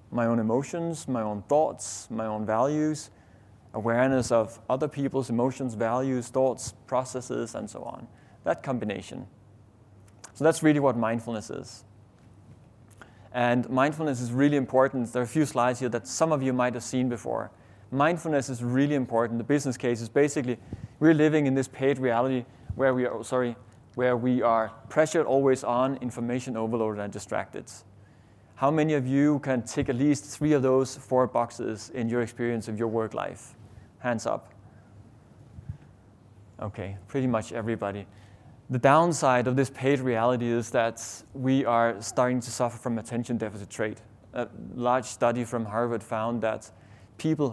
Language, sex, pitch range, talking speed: English, male, 110-135 Hz, 160 wpm